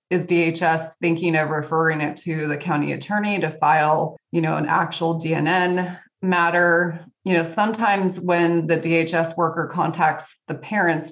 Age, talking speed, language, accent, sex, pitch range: 20-39, 150 wpm, English, American, female, 155-180 Hz